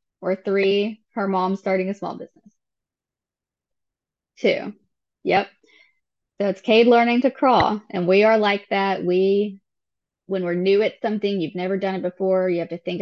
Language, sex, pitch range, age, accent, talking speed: English, female, 175-200 Hz, 20-39, American, 165 wpm